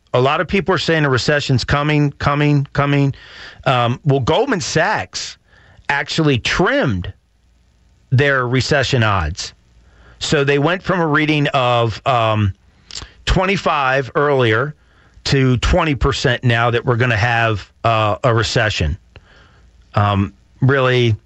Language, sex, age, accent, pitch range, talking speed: English, male, 40-59, American, 115-140 Hz, 120 wpm